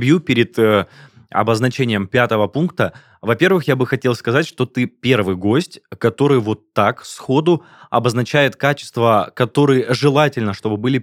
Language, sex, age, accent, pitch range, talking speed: Russian, male, 20-39, native, 110-140 Hz, 130 wpm